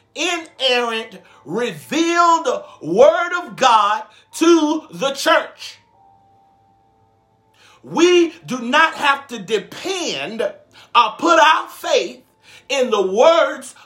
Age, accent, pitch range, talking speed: 50-69, American, 205-335 Hz, 90 wpm